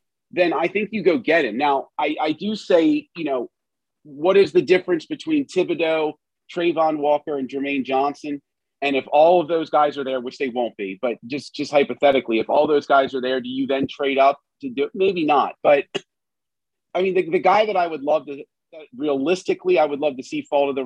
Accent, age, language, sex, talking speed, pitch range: American, 30-49, English, male, 220 wpm, 125-180 Hz